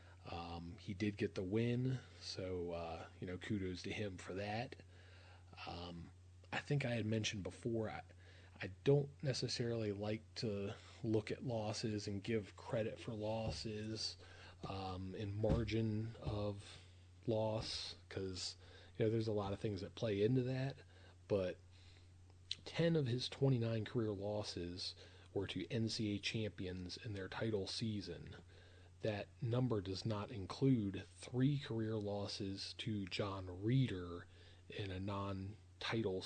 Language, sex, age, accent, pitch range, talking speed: English, male, 30-49, American, 90-110 Hz, 135 wpm